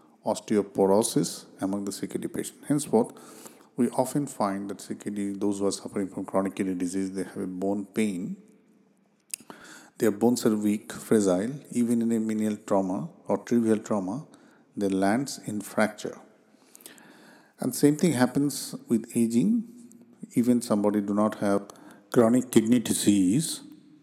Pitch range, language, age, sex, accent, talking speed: 100-125 Hz, English, 50-69, male, Indian, 135 wpm